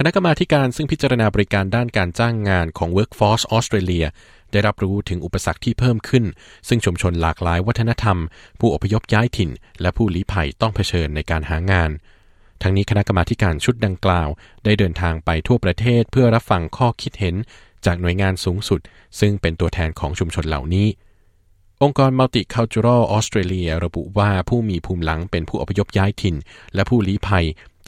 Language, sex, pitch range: Thai, male, 85-110 Hz